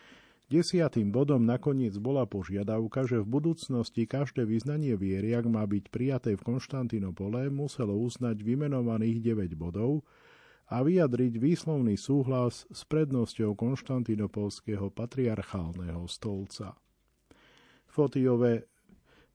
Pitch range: 105-125 Hz